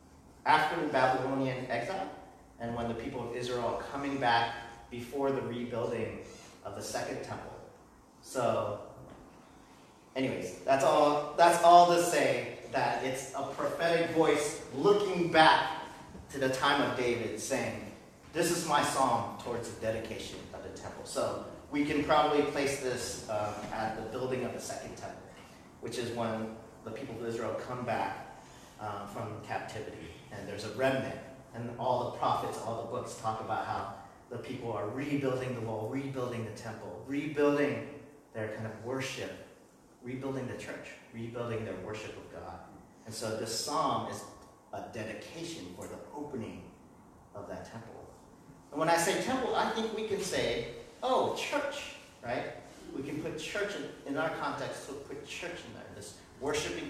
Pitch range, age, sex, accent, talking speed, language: 110-145 Hz, 30-49, male, American, 160 wpm, English